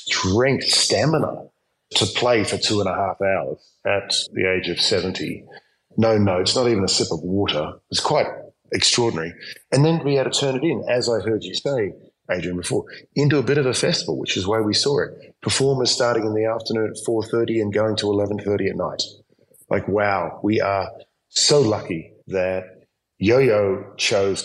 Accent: Australian